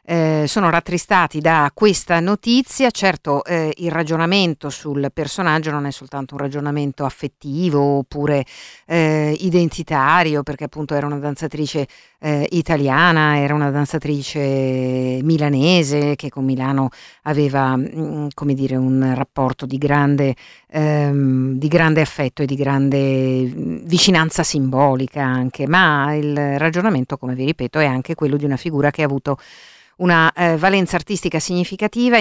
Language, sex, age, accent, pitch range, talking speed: Italian, female, 50-69, native, 140-165 Hz, 130 wpm